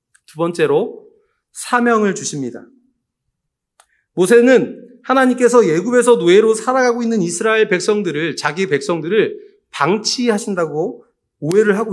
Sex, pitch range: male, 180-235 Hz